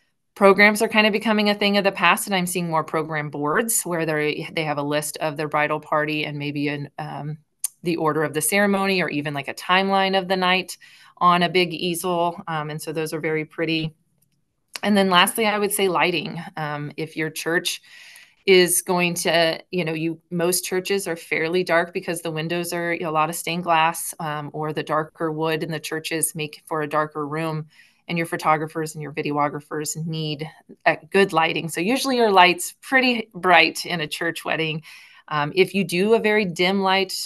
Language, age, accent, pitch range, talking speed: English, 30-49, American, 155-185 Hz, 205 wpm